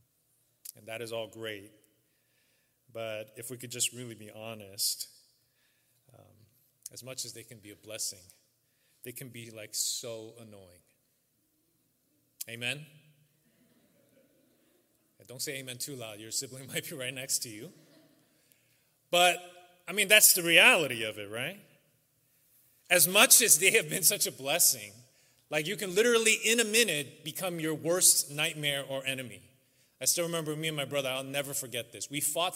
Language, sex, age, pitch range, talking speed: English, male, 30-49, 120-160 Hz, 160 wpm